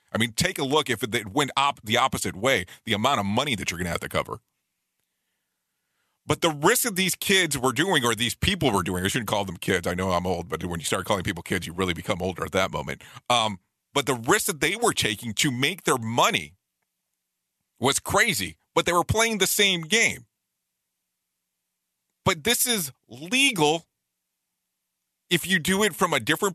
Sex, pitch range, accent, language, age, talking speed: male, 105-155 Hz, American, English, 40-59, 205 wpm